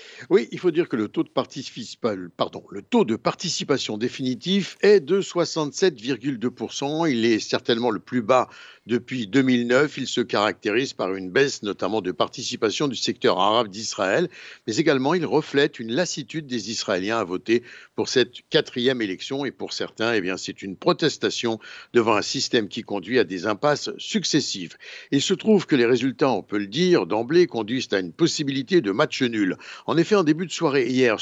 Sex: male